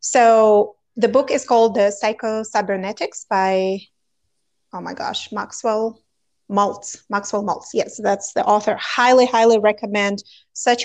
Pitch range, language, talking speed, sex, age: 205-250 Hz, English, 125 wpm, female, 30-49